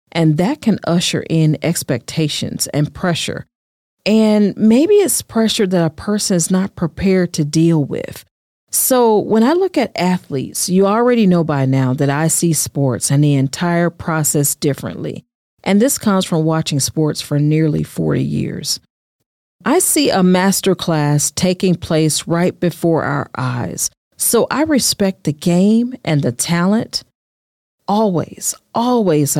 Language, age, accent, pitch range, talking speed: English, 40-59, American, 150-200 Hz, 145 wpm